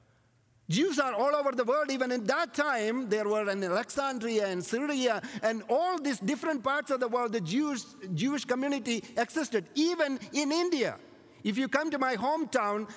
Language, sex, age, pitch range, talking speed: English, male, 50-69, 215-285 Hz, 175 wpm